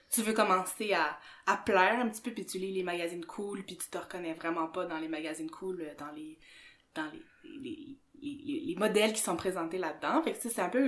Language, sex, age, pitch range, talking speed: French, female, 20-39, 185-240 Hz, 235 wpm